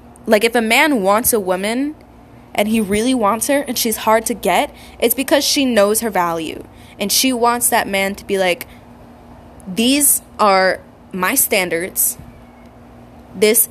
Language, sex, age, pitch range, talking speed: English, female, 10-29, 200-250 Hz, 160 wpm